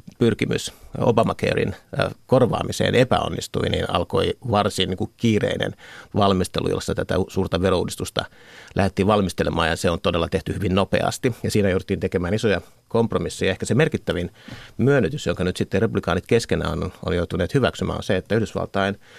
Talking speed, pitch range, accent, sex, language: 145 wpm, 90-105 Hz, native, male, Finnish